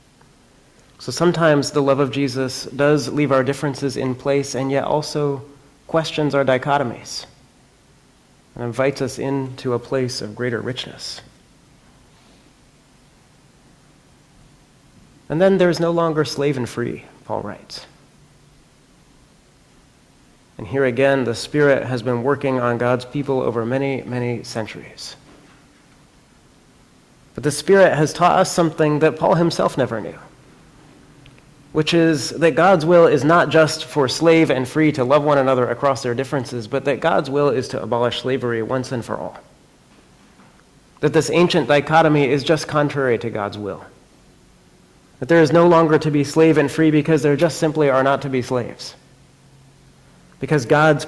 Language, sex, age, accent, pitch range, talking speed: English, male, 30-49, American, 125-155 Hz, 150 wpm